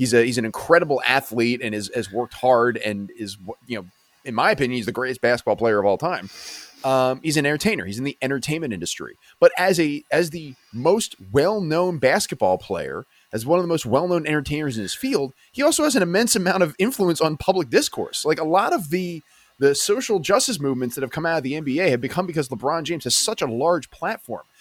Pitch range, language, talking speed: 115-165 Hz, English, 220 wpm